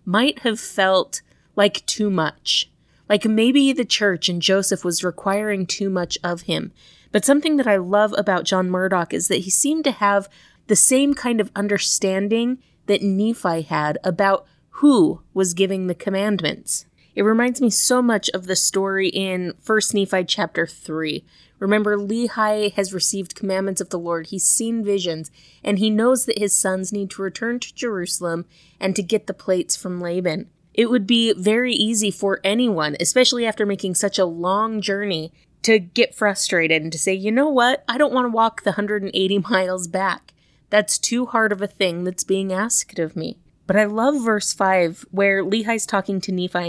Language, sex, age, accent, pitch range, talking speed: English, female, 30-49, American, 185-220 Hz, 180 wpm